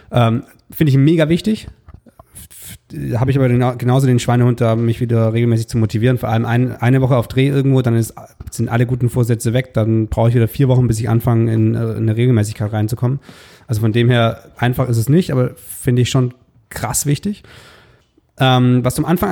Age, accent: 30-49, German